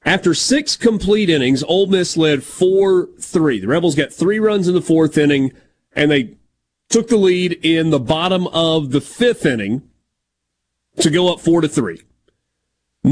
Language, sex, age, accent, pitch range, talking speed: English, male, 40-59, American, 140-185 Hz, 150 wpm